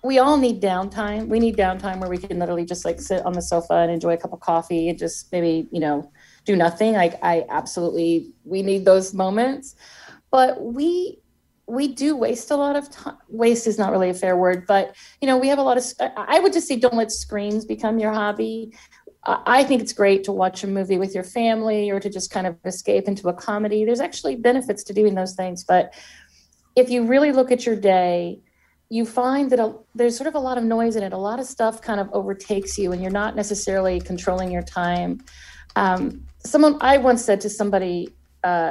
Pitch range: 185-245 Hz